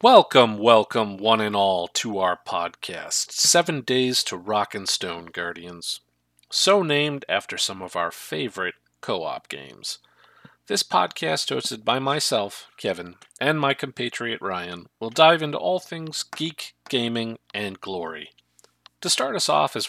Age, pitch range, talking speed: 40-59, 95-150 Hz, 145 wpm